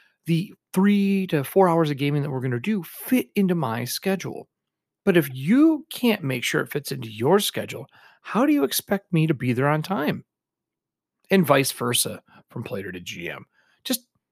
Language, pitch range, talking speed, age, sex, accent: English, 120-190 Hz, 190 wpm, 40-59, male, American